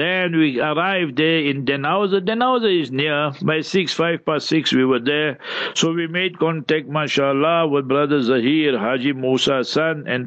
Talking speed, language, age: 170 wpm, English, 60-79